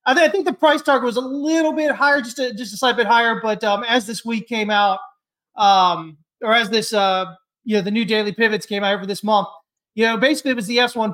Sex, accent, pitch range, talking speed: male, American, 200-250 Hz, 270 wpm